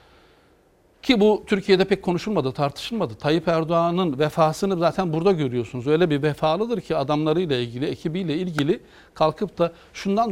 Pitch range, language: 150-200 Hz, Turkish